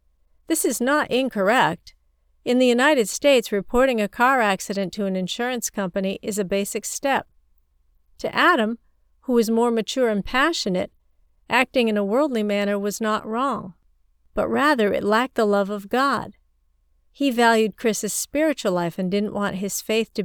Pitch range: 195-240 Hz